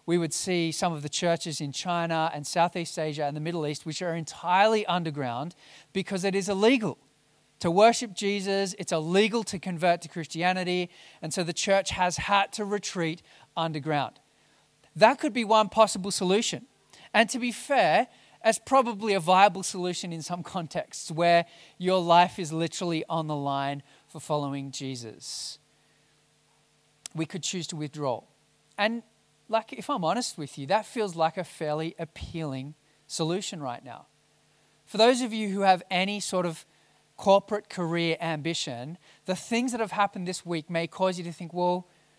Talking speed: 165 wpm